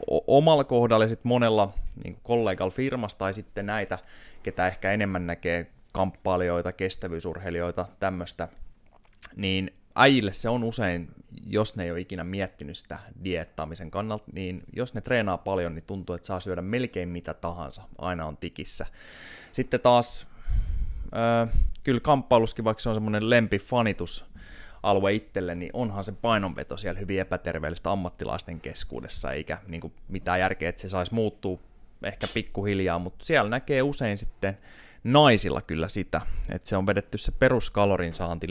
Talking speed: 145 wpm